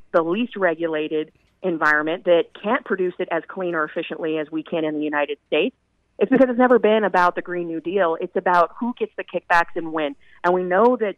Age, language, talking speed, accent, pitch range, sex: 30-49, English, 220 wpm, American, 165-195 Hz, female